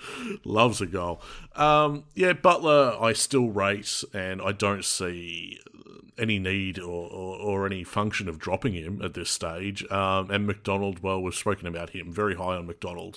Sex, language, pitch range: male, English, 95-120 Hz